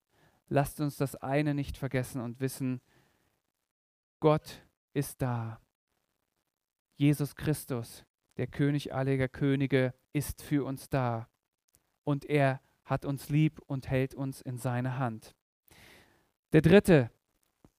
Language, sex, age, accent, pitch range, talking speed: German, male, 40-59, German, 130-155 Hz, 115 wpm